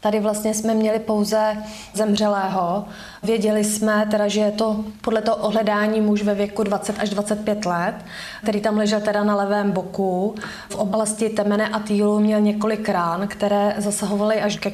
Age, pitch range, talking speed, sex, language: 20-39, 205-215 Hz, 165 wpm, female, Czech